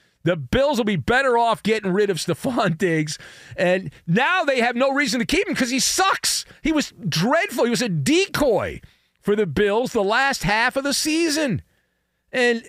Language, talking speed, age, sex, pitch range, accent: English, 190 wpm, 40-59, male, 185-270 Hz, American